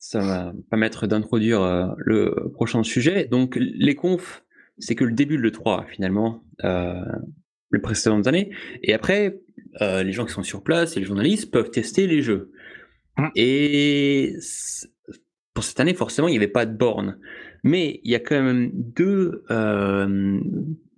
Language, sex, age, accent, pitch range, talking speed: French, male, 20-39, French, 105-150 Hz, 165 wpm